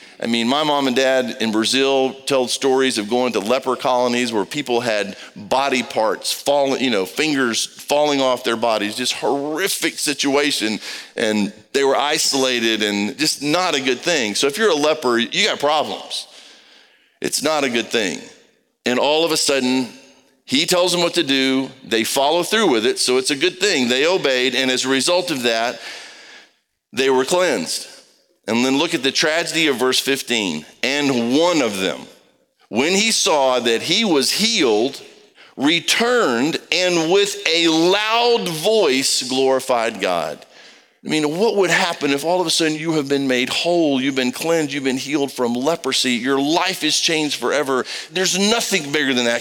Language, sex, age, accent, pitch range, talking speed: English, male, 50-69, American, 125-170 Hz, 180 wpm